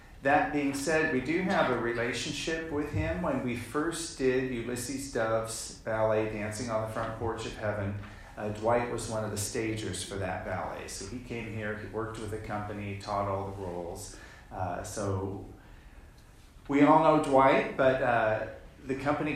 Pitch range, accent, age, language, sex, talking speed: 110-135 Hz, American, 40-59, English, male, 175 wpm